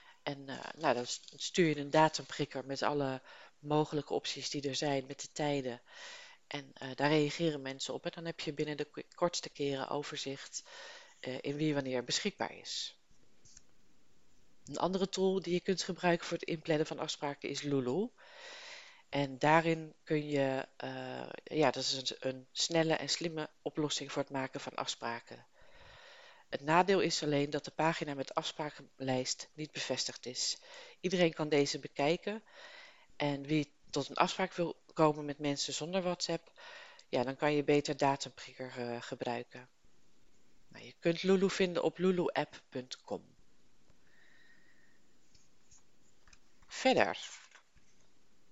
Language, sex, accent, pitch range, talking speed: Dutch, female, Dutch, 135-170 Hz, 140 wpm